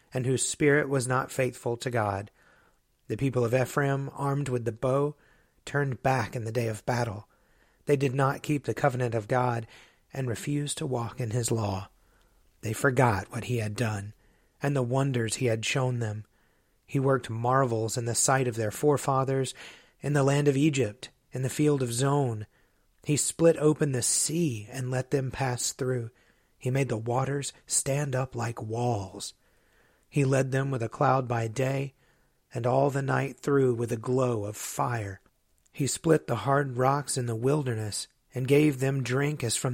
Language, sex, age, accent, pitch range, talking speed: English, male, 30-49, American, 115-135 Hz, 180 wpm